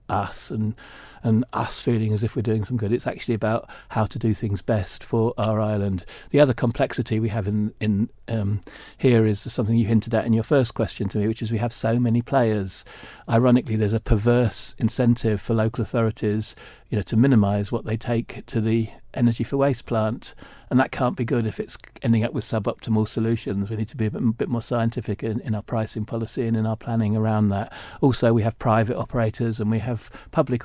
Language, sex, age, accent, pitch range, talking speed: English, male, 40-59, British, 110-120 Hz, 220 wpm